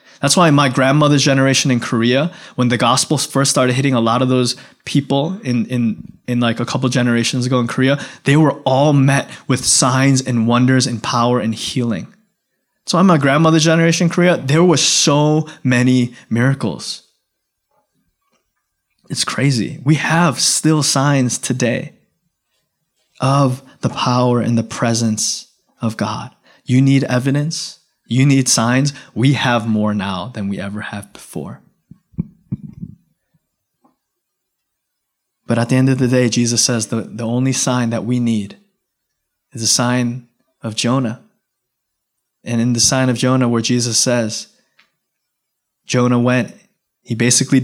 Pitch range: 120-135 Hz